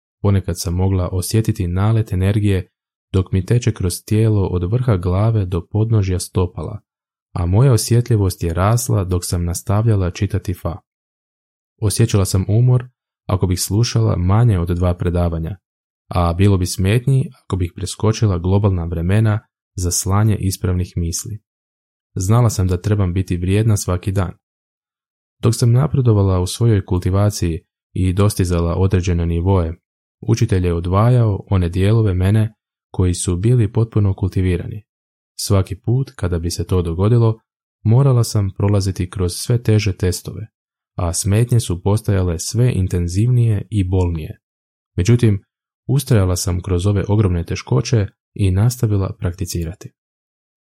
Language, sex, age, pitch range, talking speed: Croatian, male, 20-39, 90-110 Hz, 130 wpm